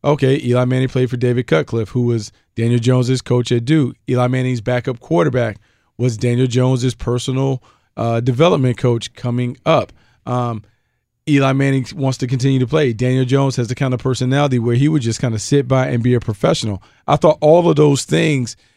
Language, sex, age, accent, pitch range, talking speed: English, male, 40-59, American, 115-130 Hz, 190 wpm